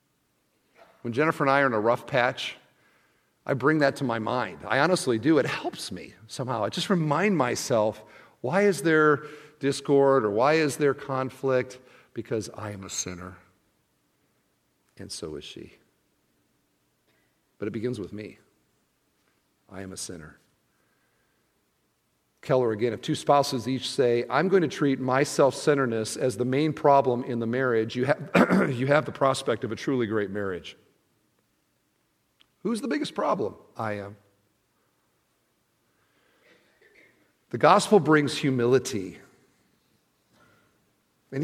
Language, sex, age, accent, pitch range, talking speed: English, male, 50-69, American, 115-150 Hz, 140 wpm